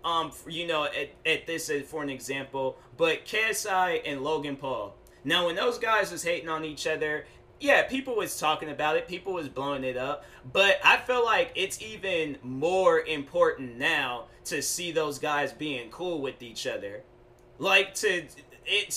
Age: 20-39